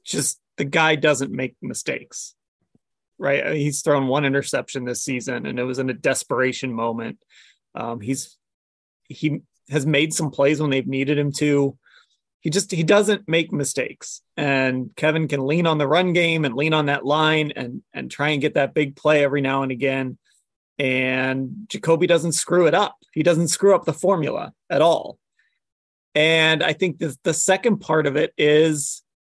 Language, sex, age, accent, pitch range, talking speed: English, male, 30-49, American, 140-175 Hz, 180 wpm